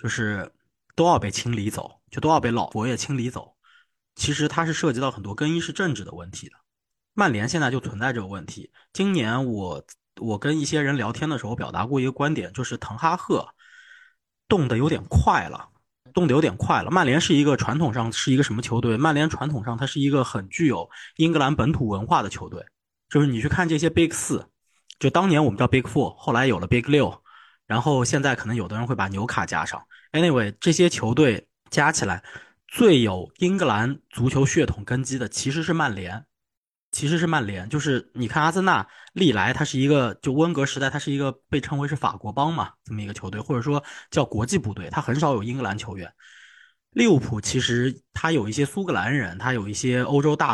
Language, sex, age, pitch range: Chinese, male, 20-39, 115-155 Hz